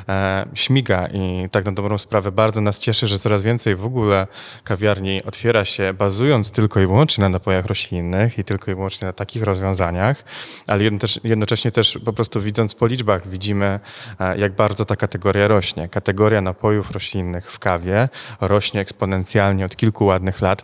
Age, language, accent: 20-39, Polish, native